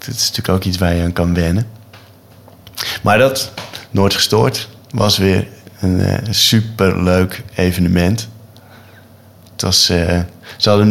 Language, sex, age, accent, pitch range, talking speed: Dutch, male, 20-39, Dutch, 95-115 Hz, 145 wpm